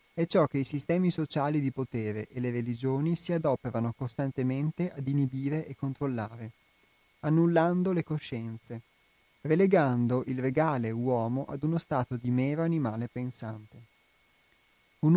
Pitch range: 120-155 Hz